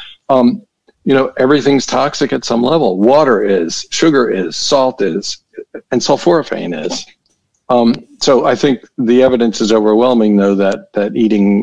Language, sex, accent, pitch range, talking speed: English, male, American, 100-125 Hz, 150 wpm